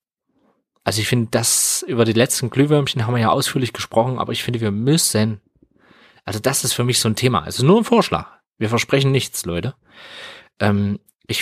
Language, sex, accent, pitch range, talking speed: German, male, German, 105-130 Hz, 190 wpm